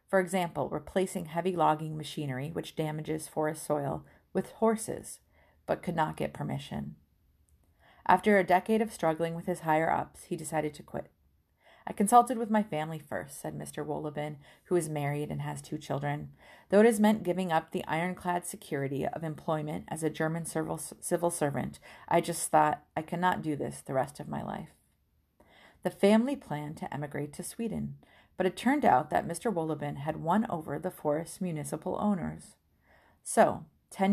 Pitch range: 150-185 Hz